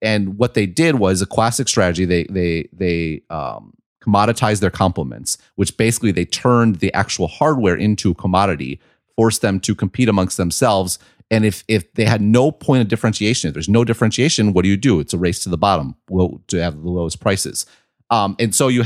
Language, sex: English, male